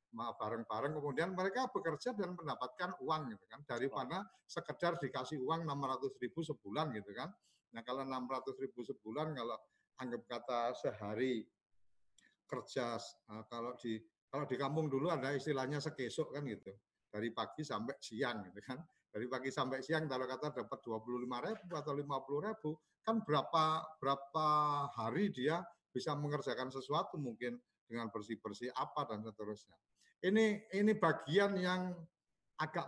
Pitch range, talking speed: 120-155 Hz, 130 wpm